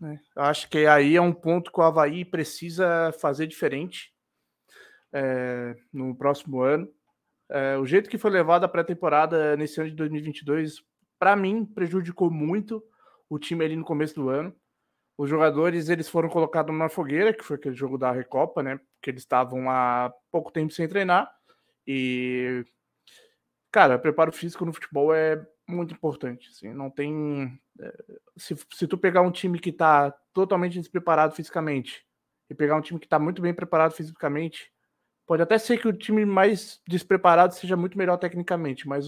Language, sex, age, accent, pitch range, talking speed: Portuguese, male, 20-39, Brazilian, 150-190 Hz, 165 wpm